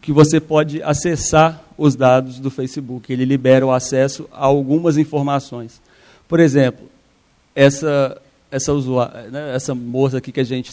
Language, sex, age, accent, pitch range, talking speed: Portuguese, male, 40-59, Brazilian, 130-150 Hz, 150 wpm